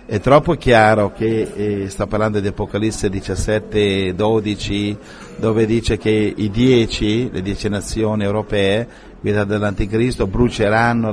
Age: 50-69